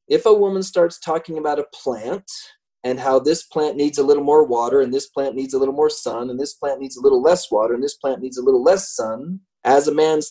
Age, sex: 30-49, male